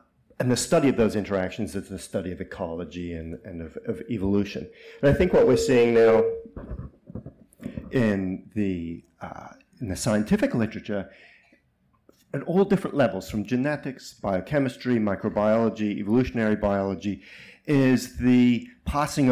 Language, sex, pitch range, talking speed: English, male, 100-130 Hz, 135 wpm